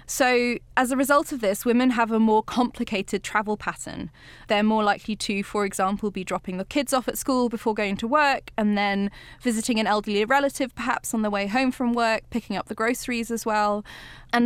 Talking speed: 210 wpm